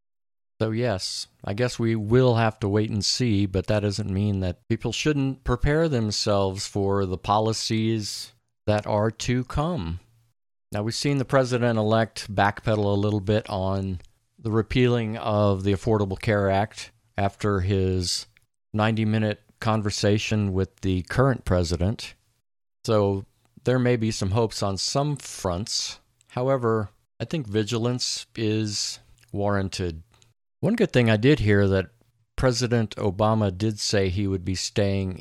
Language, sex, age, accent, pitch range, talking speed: English, male, 50-69, American, 100-115 Hz, 140 wpm